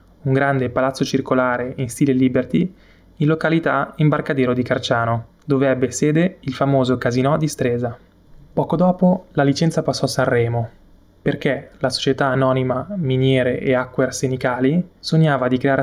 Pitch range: 125-150 Hz